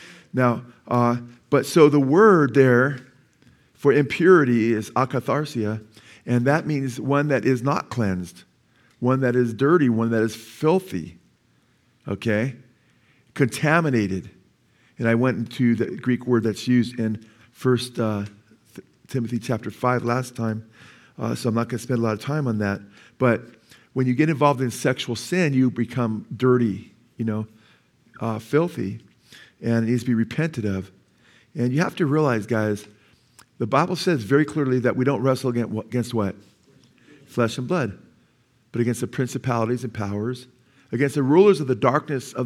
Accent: American